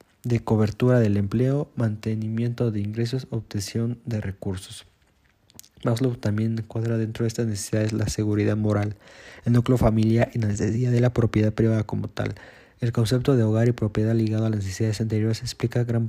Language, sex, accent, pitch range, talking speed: Spanish, male, Mexican, 105-115 Hz, 170 wpm